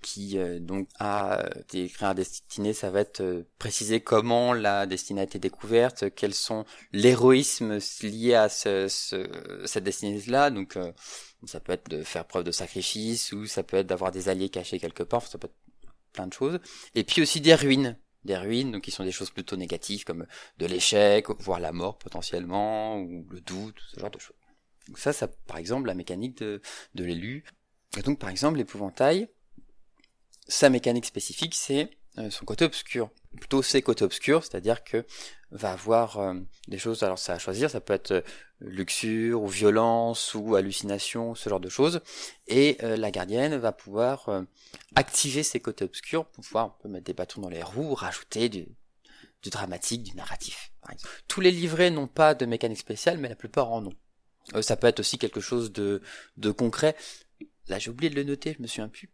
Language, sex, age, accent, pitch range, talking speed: French, male, 20-39, French, 95-130 Hz, 190 wpm